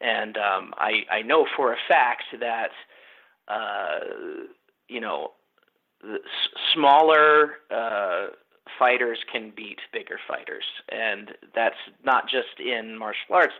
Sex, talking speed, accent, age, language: male, 120 wpm, American, 40-59, English